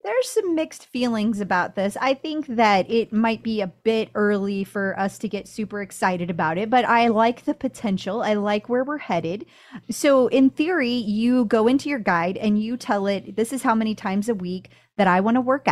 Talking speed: 220 wpm